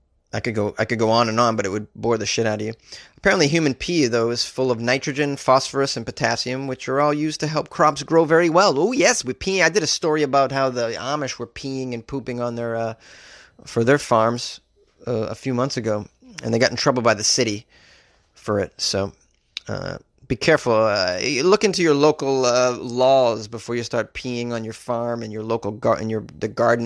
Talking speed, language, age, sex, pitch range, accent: 225 wpm, English, 30-49, male, 110-140 Hz, American